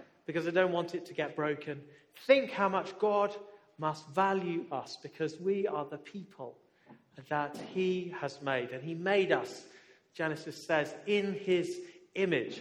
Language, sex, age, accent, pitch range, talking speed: English, male, 40-59, British, 160-205 Hz, 155 wpm